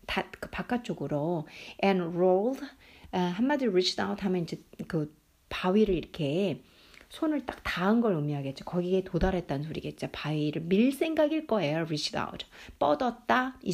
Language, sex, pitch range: Korean, female, 175-235 Hz